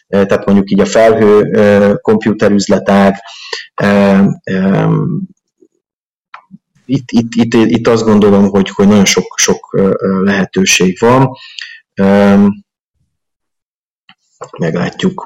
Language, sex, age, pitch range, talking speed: Hungarian, male, 30-49, 100-125 Hz, 80 wpm